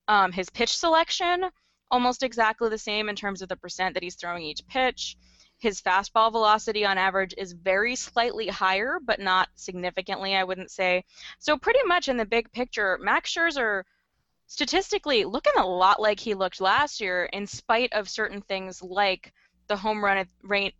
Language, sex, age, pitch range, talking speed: English, female, 20-39, 190-255 Hz, 175 wpm